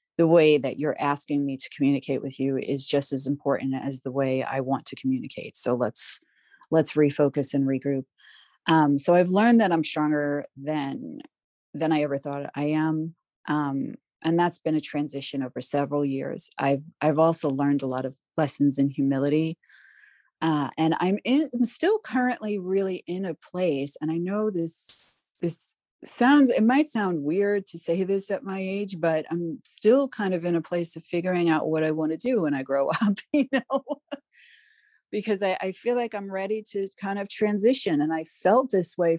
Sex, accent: female, American